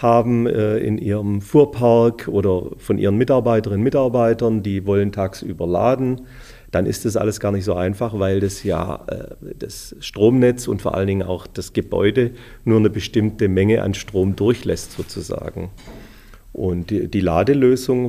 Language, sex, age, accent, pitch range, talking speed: German, male, 40-59, German, 95-120 Hz, 150 wpm